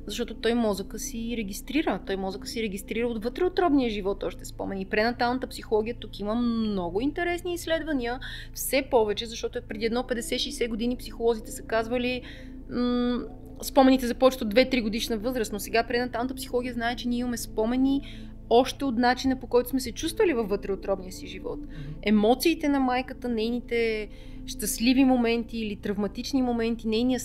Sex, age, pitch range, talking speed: female, 30-49, 220-260 Hz, 155 wpm